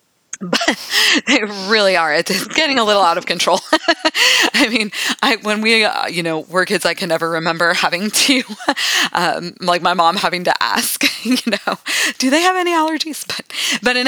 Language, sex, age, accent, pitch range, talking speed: English, female, 20-39, American, 180-265 Hz, 190 wpm